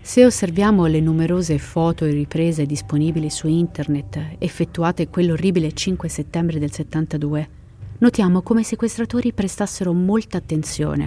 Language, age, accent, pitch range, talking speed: Italian, 30-49, native, 150-190 Hz, 125 wpm